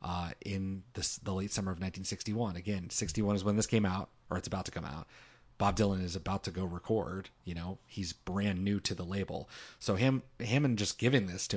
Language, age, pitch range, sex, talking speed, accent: English, 30-49, 95-115 Hz, male, 230 wpm, American